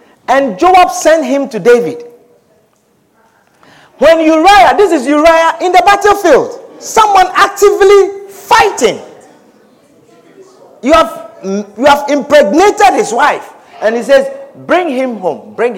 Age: 50-69